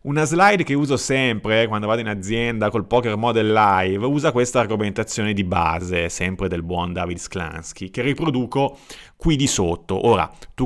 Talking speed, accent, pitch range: 170 wpm, native, 100-140 Hz